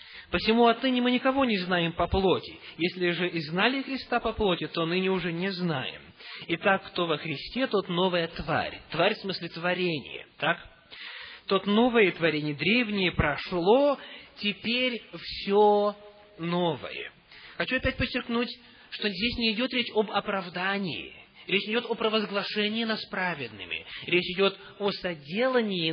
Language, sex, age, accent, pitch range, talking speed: Russian, male, 20-39, native, 155-220 Hz, 140 wpm